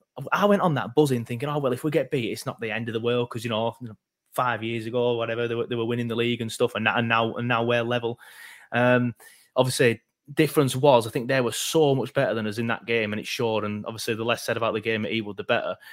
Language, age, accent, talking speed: English, 20-39, British, 285 wpm